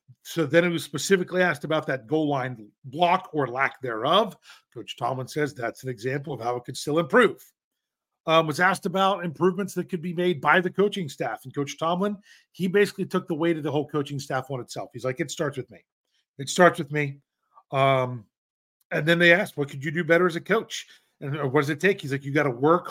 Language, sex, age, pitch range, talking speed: English, male, 40-59, 140-180 Hz, 230 wpm